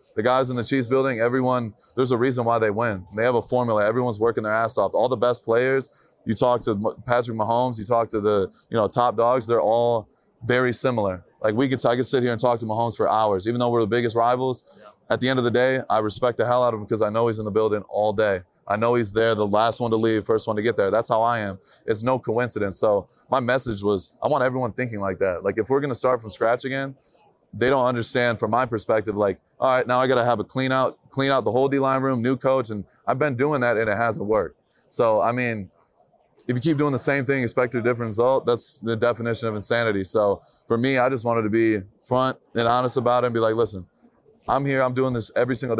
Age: 20-39